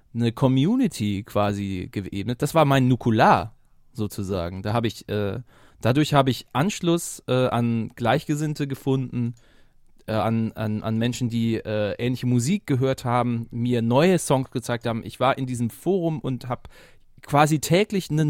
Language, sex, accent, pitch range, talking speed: German, male, German, 115-155 Hz, 155 wpm